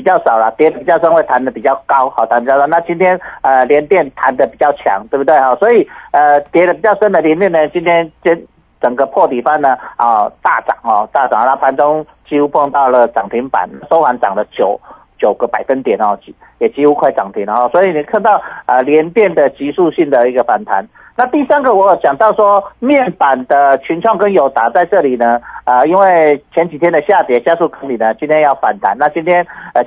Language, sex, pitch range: Chinese, male, 130-185 Hz